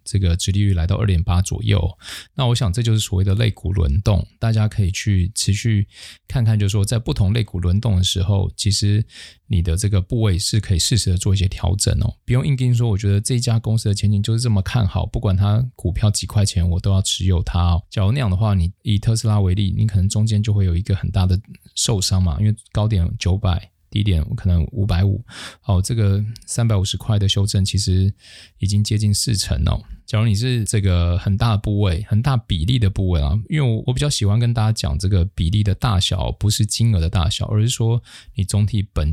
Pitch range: 95-110 Hz